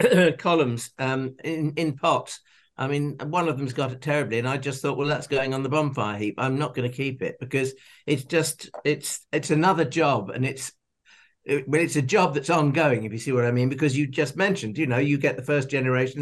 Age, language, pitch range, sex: 60-79, English, 130-155 Hz, male